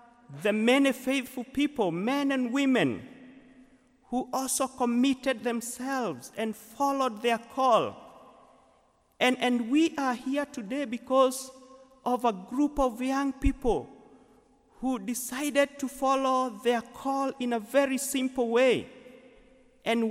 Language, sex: English, male